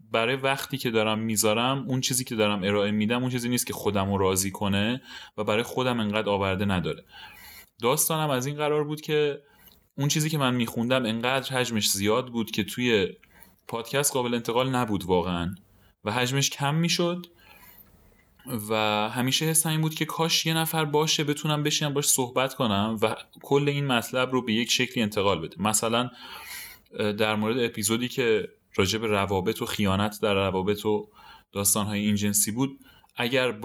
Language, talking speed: Persian, 165 wpm